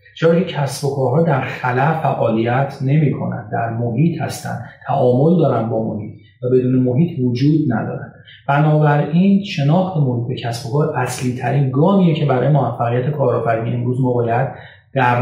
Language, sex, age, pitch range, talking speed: Persian, male, 30-49, 125-150 Hz, 140 wpm